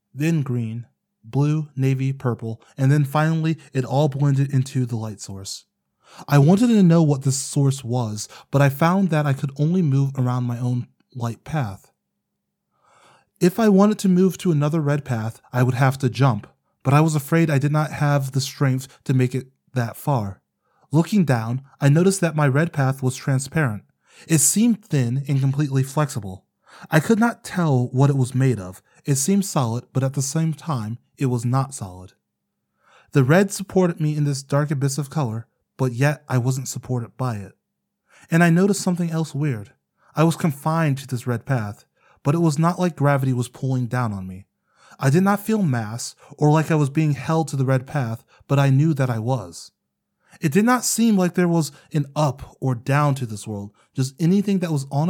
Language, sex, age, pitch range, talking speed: English, male, 20-39, 125-160 Hz, 200 wpm